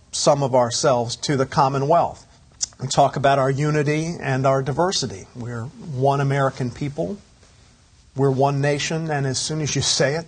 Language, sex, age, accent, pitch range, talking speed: English, male, 50-69, American, 130-155 Hz, 165 wpm